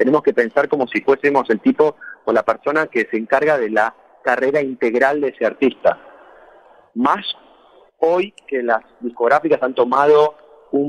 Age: 30-49